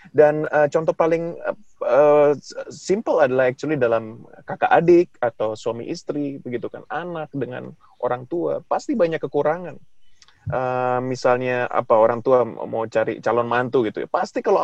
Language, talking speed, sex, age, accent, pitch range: English, 150 wpm, male, 20-39, Indonesian, 140-195 Hz